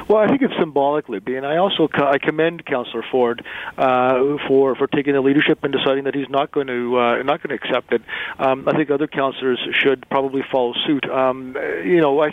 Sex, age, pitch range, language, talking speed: male, 40-59, 130-145 Hz, English, 215 wpm